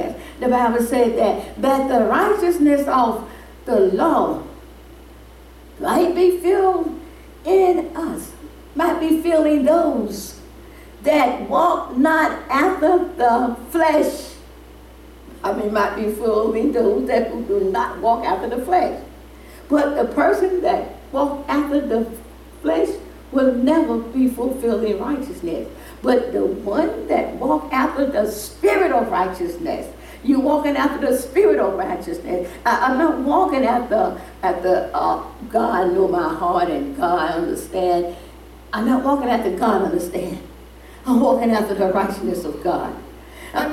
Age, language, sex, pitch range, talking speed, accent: 60-79, English, female, 230-325 Hz, 135 wpm, American